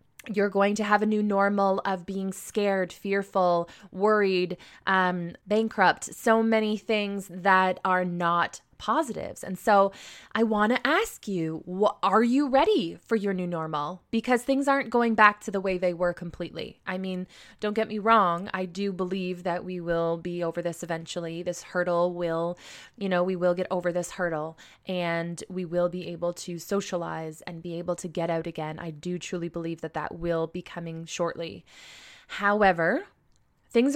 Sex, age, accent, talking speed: female, 20-39, American, 175 wpm